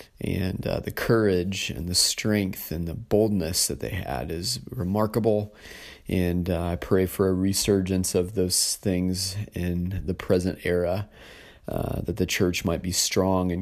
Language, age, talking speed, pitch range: English, 30-49, 165 wpm, 85-105 Hz